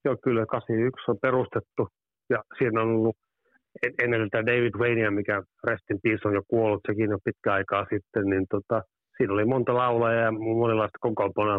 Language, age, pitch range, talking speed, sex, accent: Finnish, 30-49, 105-120 Hz, 165 wpm, male, native